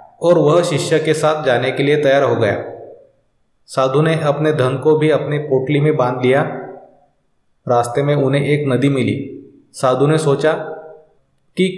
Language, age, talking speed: Hindi, 30-49, 165 wpm